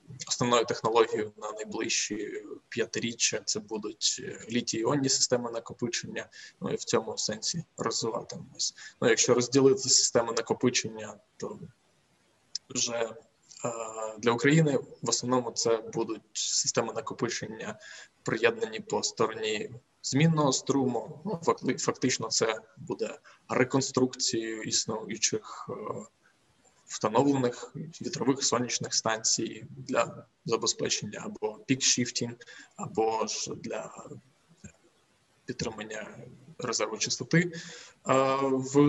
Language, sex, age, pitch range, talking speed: Ukrainian, male, 20-39, 115-145 Hz, 95 wpm